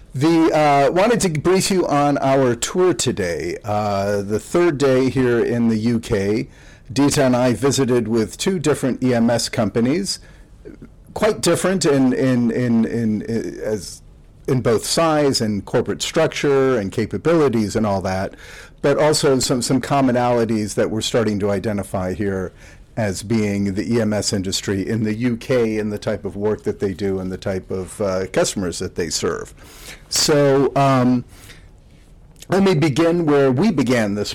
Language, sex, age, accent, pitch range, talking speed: English, male, 50-69, American, 105-140 Hz, 160 wpm